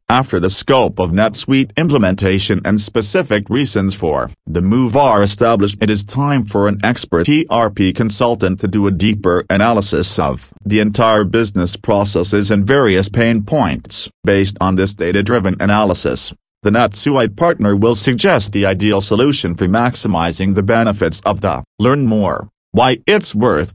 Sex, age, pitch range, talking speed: male, 40-59, 100-115 Hz, 150 wpm